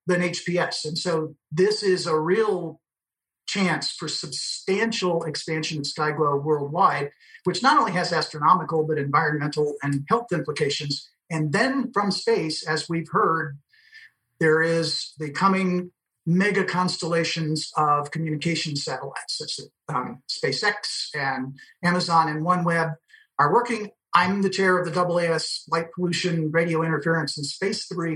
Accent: American